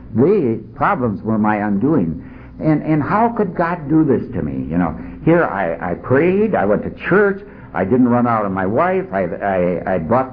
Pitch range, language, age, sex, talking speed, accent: 95-135 Hz, English, 60-79, male, 205 wpm, American